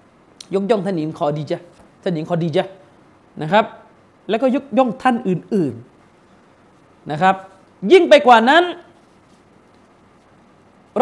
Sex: male